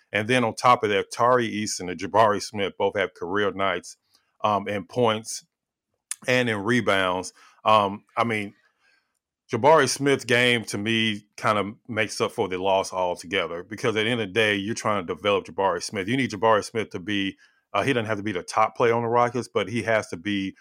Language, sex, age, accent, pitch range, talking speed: English, male, 30-49, American, 100-120 Hz, 210 wpm